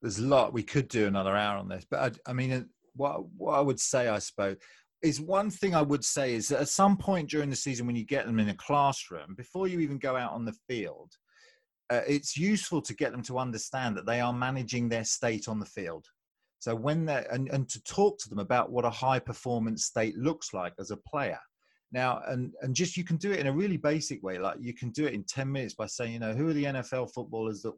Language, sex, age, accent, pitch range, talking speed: English, male, 30-49, British, 105-130 Hz, 255 wpm